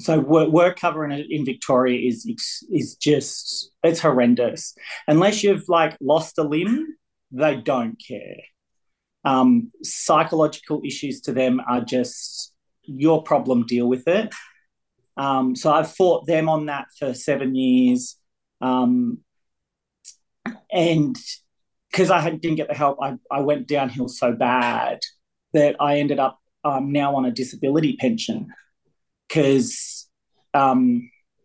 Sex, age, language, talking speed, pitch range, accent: male, 30-49, English, 125 wpm, 130-170 Hz, Australian